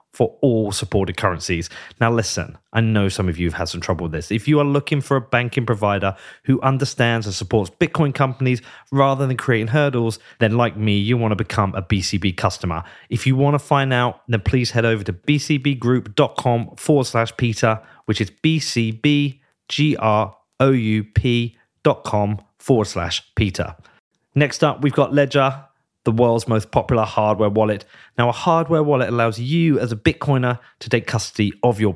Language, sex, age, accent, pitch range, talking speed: English, male, 30-49, British, 105-135 Hz, 170 wpm